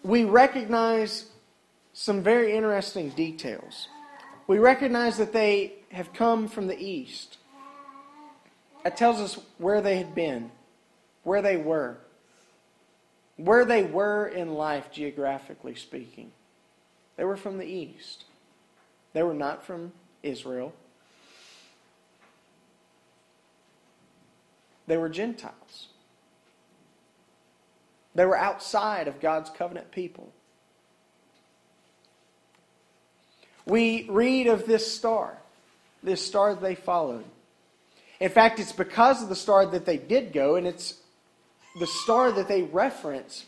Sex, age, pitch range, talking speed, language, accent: male, 40-59, 145-215 Hz, 110 wpm, English, American